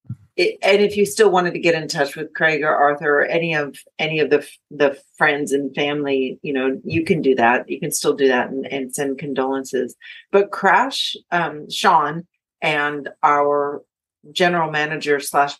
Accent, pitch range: American, 140-170 Hz